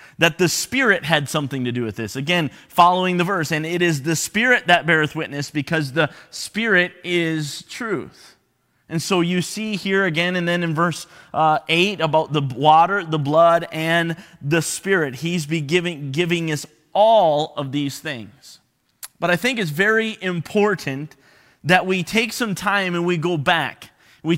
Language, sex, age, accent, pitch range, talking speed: English, male, 30-49, American, 145-175 Hz, 170 wpm